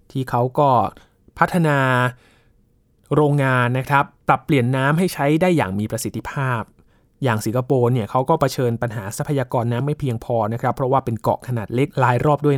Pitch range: 120-155 Hz